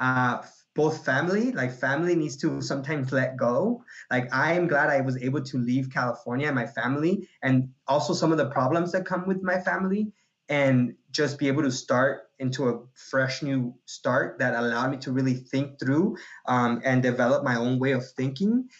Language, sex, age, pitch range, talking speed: English, male, 20-39, 125-145 Hz, 190 wpm